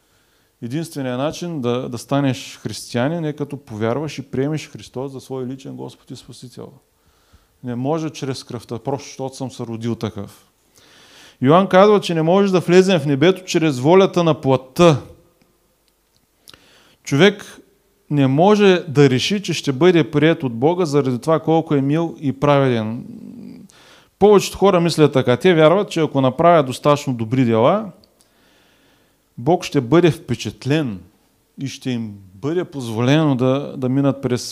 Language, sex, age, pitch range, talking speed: Bulgarian, male, 30-49, 120-160 Hz, 145 wpm